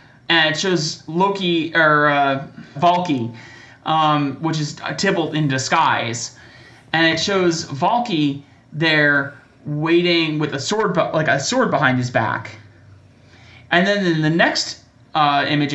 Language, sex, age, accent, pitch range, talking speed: English, male, 30-49, American, 130-175 Hz, 135 wpm